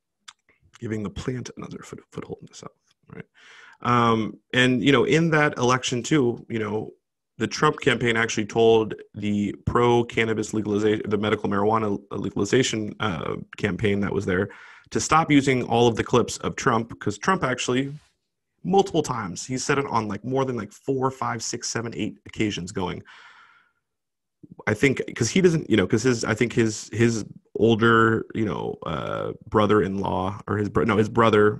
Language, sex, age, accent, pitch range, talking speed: English, male, 30-49, American, 105-130 Hz, 170 wpm